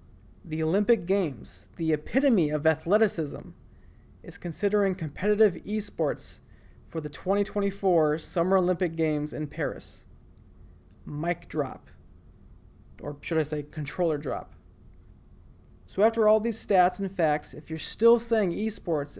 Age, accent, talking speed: 30-49, American, 120 wpm